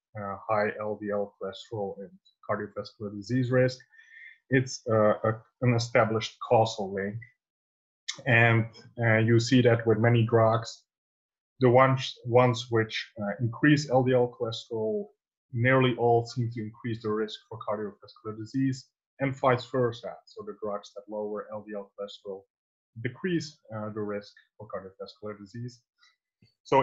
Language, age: English, 30-49